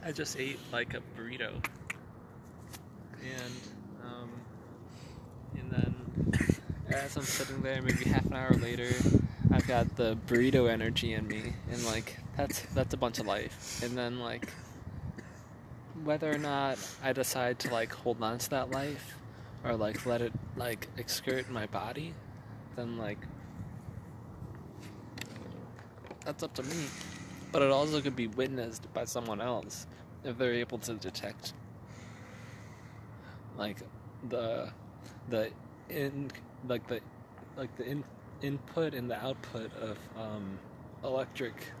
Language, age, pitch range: English, 20-39, 110-130 Hz